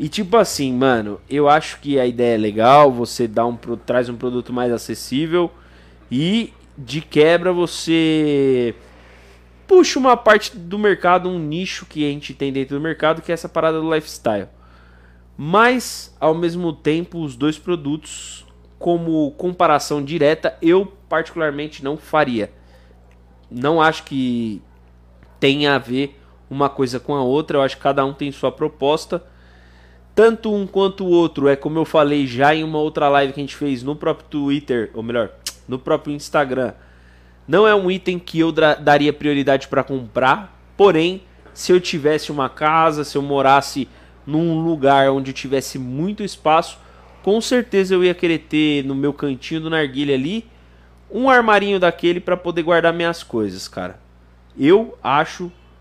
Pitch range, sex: 120-165 Hz, male